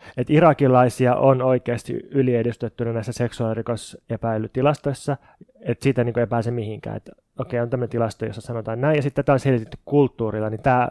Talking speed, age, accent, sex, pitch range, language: 160 wpm, 20-39, native, male, 115-135 Hz, Finnish